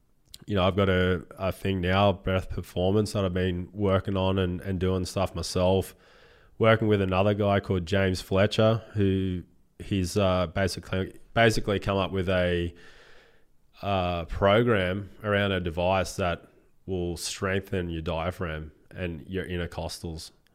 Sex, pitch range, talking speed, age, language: male, 85-95 Hz, 145 wpm, 20-39, English